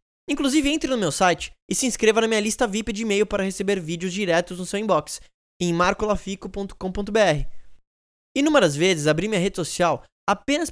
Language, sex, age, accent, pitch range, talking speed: Portuguese, male, 10-29, Brazilian, 170-230 Hz, 170 wpm